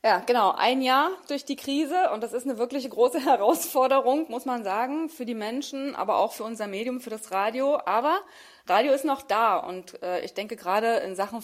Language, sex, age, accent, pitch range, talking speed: German, female, 30-49, German, 190-245 Hz, 210 wpm